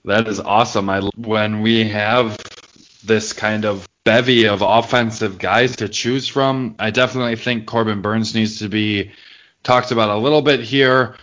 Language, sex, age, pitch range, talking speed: English, male, 20-39, 100-115 Hz, 160 wpm